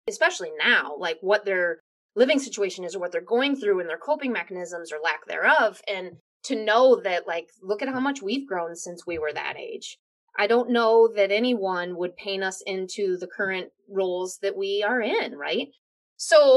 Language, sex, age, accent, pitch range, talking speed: English, female, 20-39, American, 180-250 Hz, 195 wpm